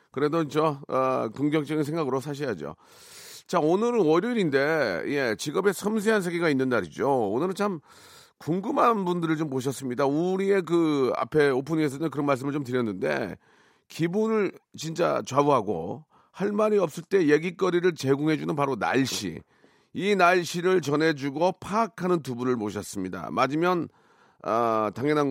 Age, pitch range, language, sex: 40-59, 125-175 Hz, Korean, male